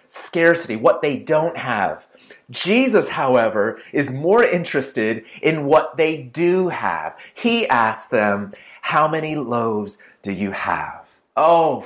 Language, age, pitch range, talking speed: English, 30-49, 130-170 Hz, 125 wpm